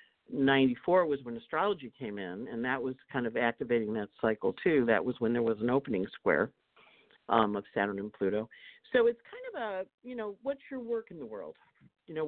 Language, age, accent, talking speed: English, 50-69, American, 210 wpm